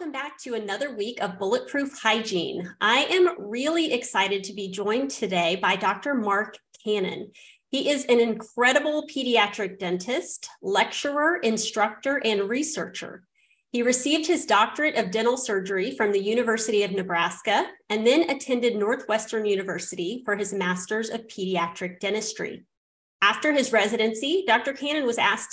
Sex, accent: female, American